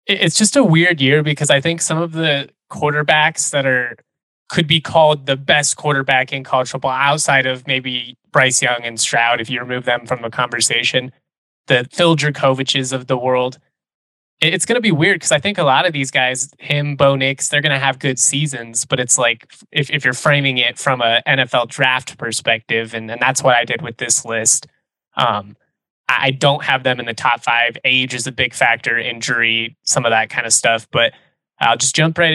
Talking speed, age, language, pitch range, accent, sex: 210 wpm, 20-39, English, 125-145 Hz, American, male